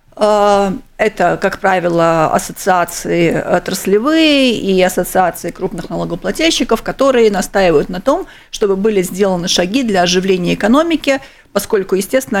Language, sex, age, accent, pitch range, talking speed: Russian, female, 40-59, native, 185-235 Hz, 105 wpm